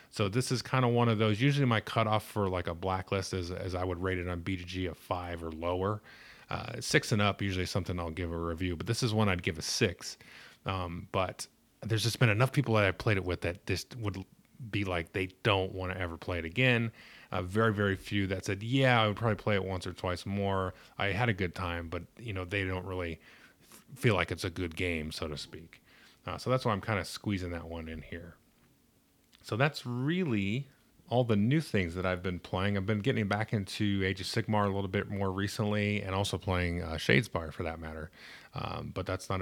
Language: English